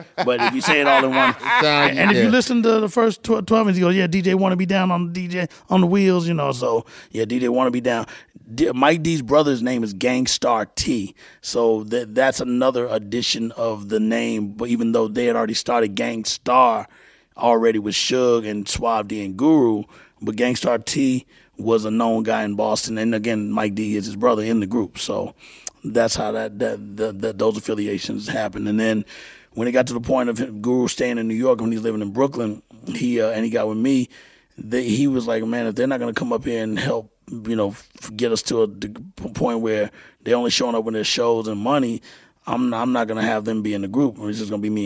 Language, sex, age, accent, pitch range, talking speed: English, male, 30-49, American, 110-130 Hz, 235 wpm